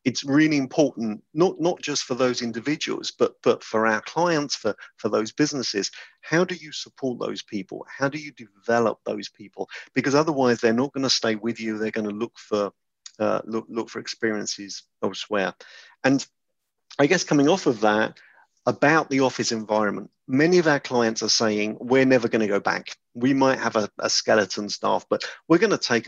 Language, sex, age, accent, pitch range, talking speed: English, male, 50-69, British, 105-135 Hz, 190 wpm